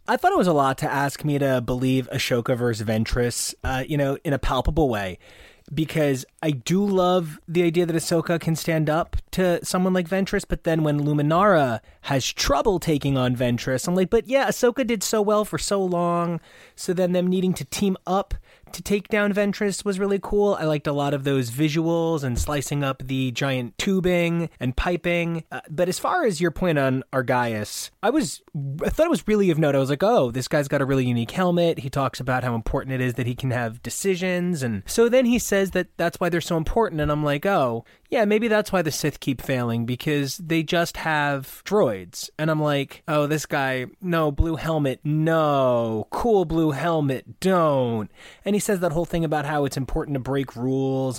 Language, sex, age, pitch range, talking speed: English, male, 30-49, 135-185 Hz, 210 wpm